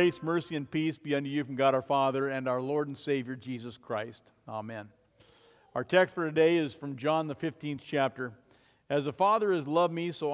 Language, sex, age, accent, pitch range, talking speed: English, male, 50-69, American, 130-170 Hz, 210 wpm